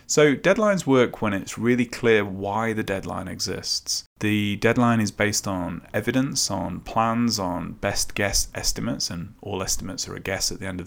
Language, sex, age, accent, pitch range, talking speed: English, male, 30-49, British, 95-120 Hz, 180 wpm